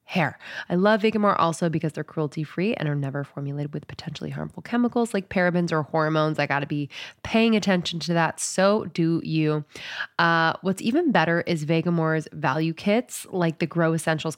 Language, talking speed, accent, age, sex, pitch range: English, 180 wpm, American, 20-39, female, 150-180 Hz